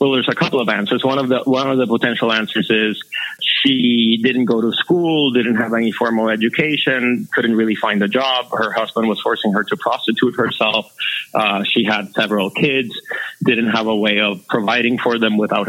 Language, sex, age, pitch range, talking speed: English, male, 30-49, 105-125 Hz, 200 wpm